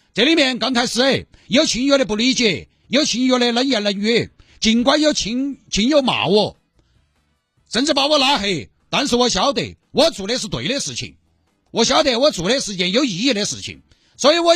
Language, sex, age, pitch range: Chinese, male, 50-69, 170-260 Hz